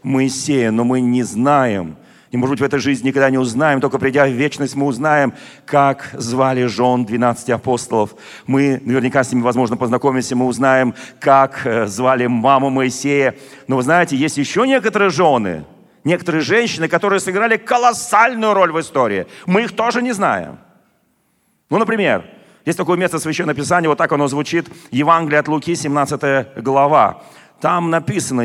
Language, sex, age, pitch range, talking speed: Russian, male, 40-59, 135-175 Hz, 160 wpm